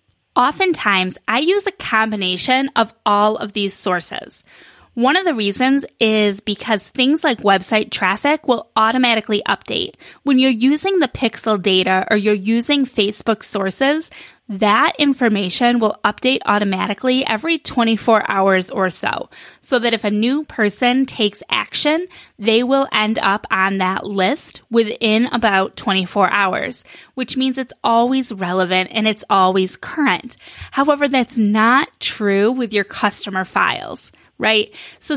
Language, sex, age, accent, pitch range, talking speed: English, female, 10-29, American, 205-265 Hz, 140 wpm